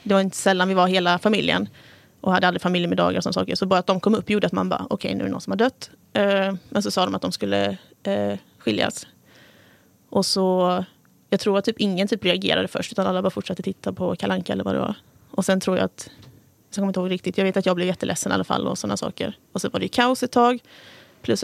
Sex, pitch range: female, 175-200 Hz